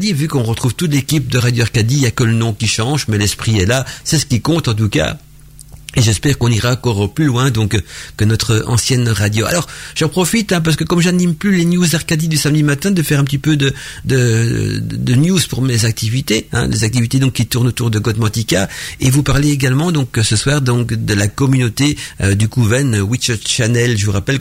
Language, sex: French, male